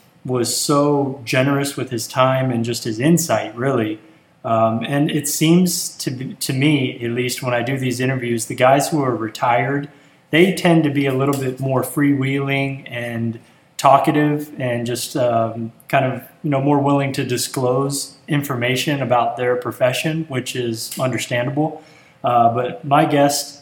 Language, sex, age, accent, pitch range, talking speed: English, male, 20-39, American, 120-145 Hz, 165 wpm